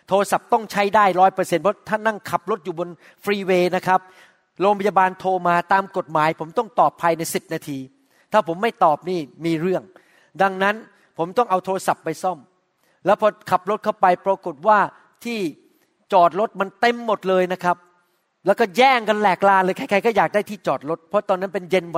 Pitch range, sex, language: 180-225 Hz, male, Thai